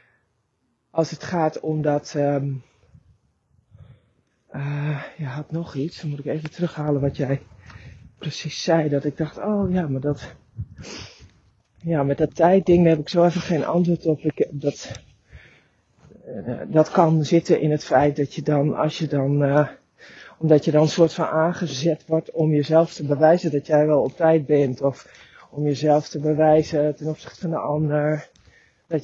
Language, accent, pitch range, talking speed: Dutch, Dutch, 140-160 Hz, 170 wpm